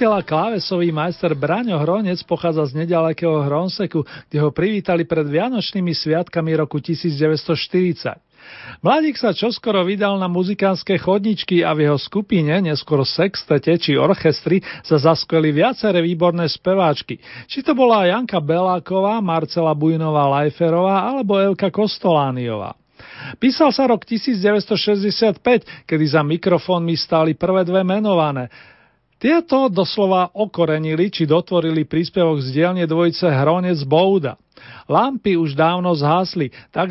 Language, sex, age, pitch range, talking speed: Slovak, male, 40-59, 155-195 Hz, 120 wpm